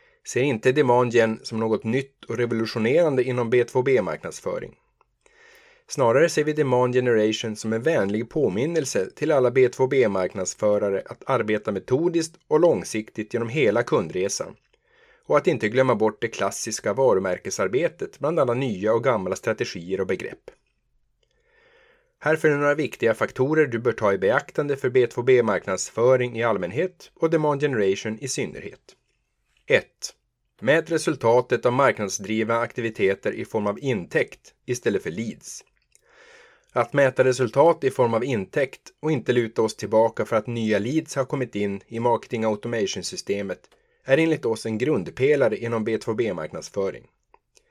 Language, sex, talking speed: Swedish, male, 135 wpm